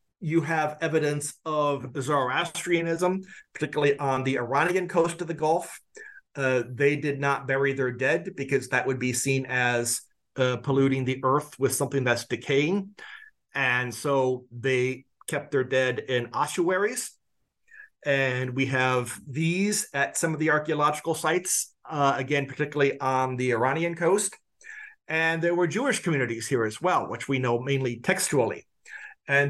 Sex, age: male, 40-59